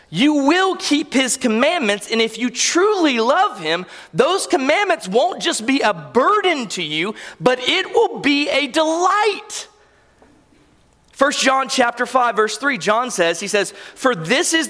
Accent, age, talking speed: American, 30-49, 160 wpm